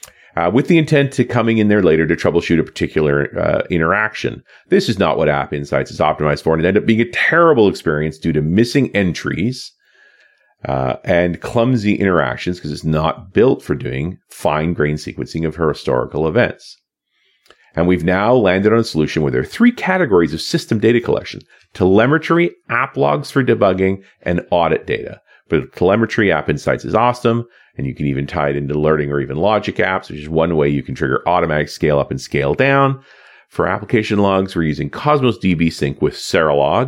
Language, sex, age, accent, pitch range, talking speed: English, male, 40-59, American, 75-105 Hz, 190 wpm